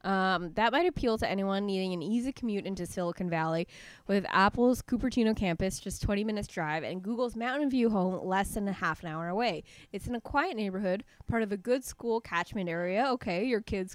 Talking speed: 205 wpm